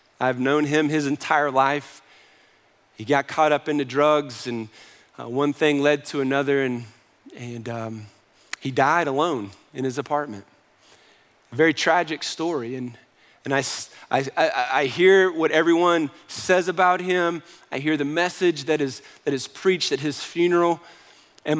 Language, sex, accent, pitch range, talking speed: English, male, American, 135-175 Hz, 160 wpm